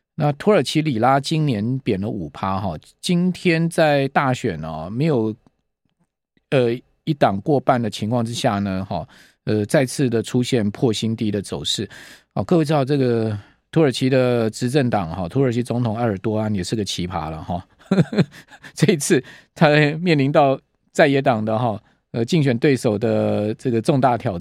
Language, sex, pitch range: Chinese, male, 115-160 Hz